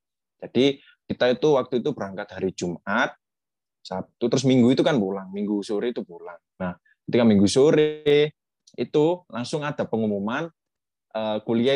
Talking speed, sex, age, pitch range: 140 wpm, male, 20-39, 95-125 Hz